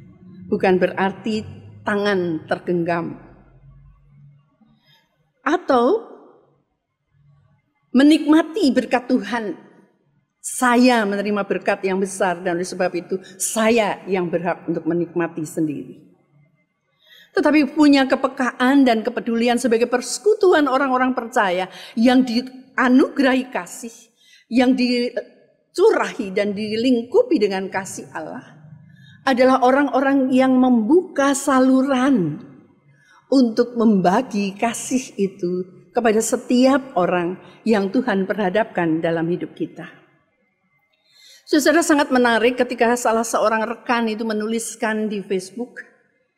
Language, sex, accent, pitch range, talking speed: Indonesian, female, native, 185-255 Hz, 90 wpm